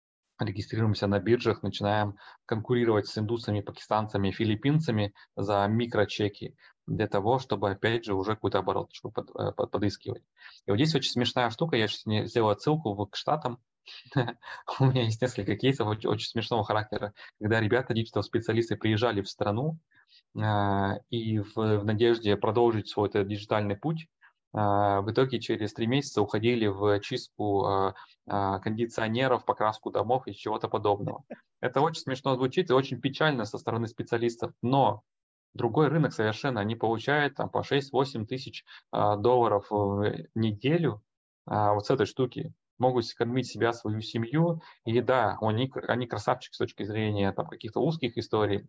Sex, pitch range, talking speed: male, 105-125 Hz, 140 wpm